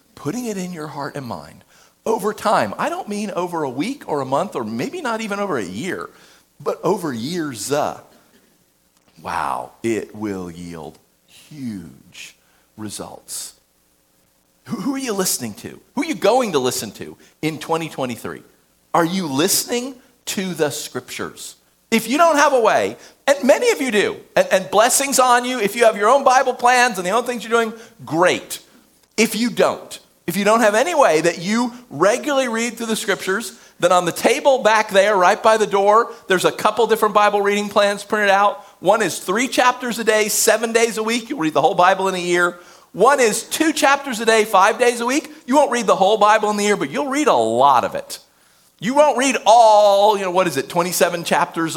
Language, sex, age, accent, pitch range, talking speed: English, male, 50-69, American, 165-235 Hz, 205 wpm